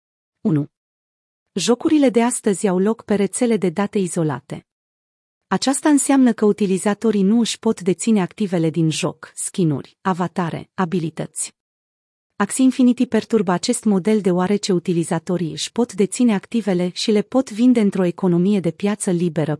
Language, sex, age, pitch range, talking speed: Romanian, female, 30-49, 170-220 Hz, 140 wpm